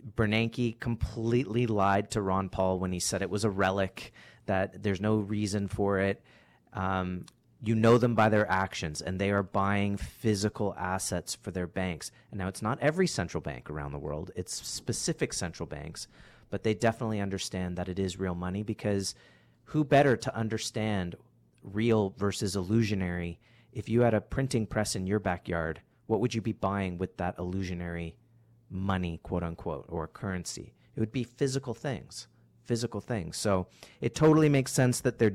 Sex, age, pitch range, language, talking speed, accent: male, 30-49, 95-115 Hz, English, 170 wpm, American